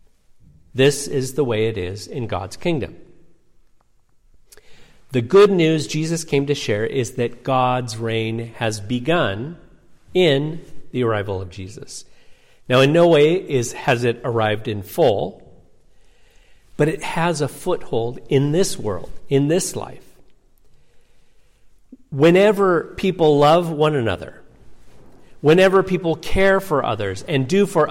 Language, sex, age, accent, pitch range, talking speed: English, male, 50-69, American, 115-160 Hz, 130 wpm